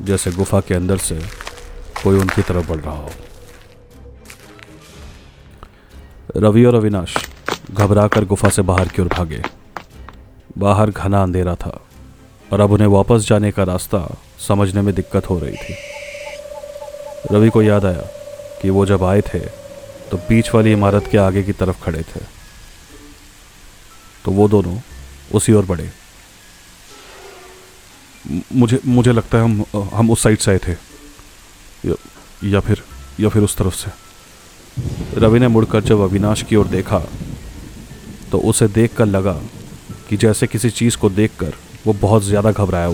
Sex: male